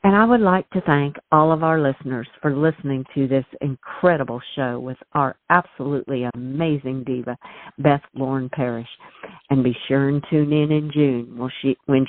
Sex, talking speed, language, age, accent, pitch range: female, 165 wpm, English, 50-69, American, 125-145 Hz